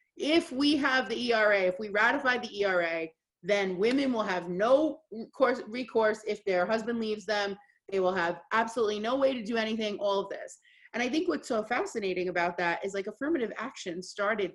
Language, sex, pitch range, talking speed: English, female, 190-250 Hz, 195 wpm